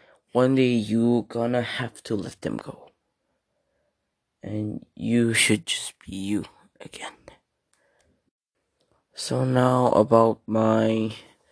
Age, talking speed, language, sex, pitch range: 20-39, 105 wpm, English, male, 105-120 Hz